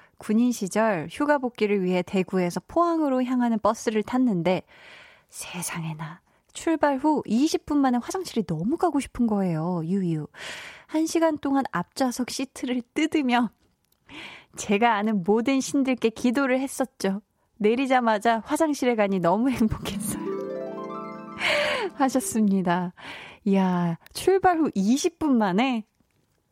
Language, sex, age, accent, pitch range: Korean, female, 20-39, native, 185-265 Hz